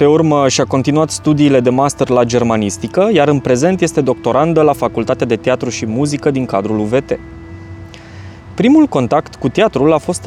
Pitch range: 120-165 Hz